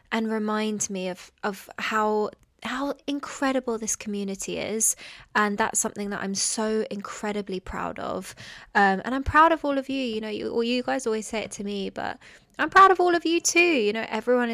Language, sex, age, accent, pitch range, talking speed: English, female, 20-39, British, 195-260 Hz, 200 wpm